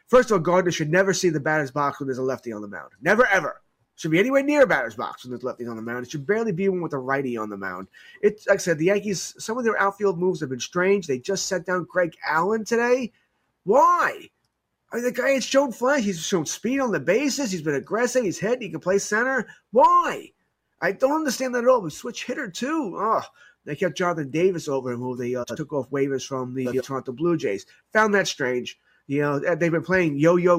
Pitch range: 145-215 Hz